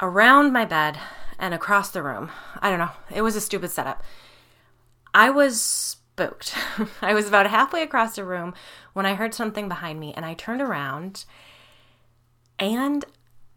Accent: American